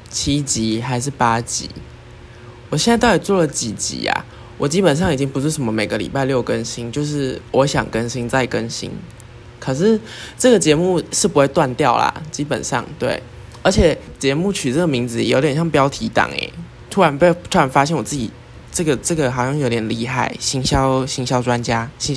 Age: 20-39